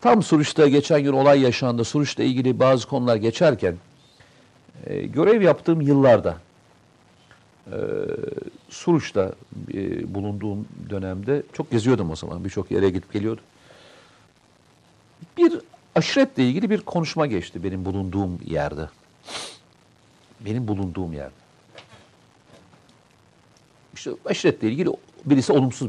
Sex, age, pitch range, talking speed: male, 60-79, 95-145 Hz, 105 wpm